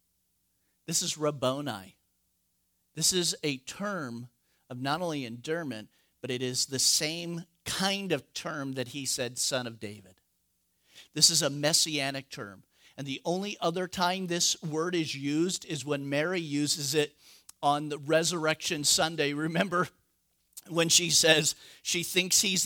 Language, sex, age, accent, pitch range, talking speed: English, male, 50-69, American, 125-185 Hz, 145 wpm